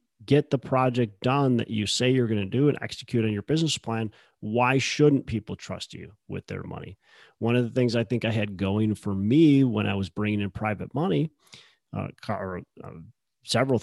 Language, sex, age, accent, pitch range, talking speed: English, male, 30-49, American, 105-125 Hz, 205 wpm